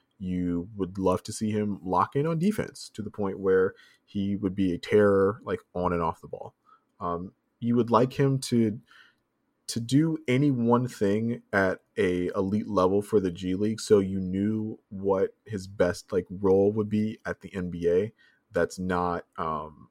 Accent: American